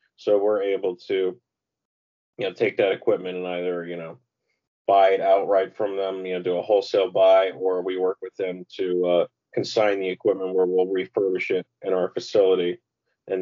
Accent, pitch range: American, 90-130 Hz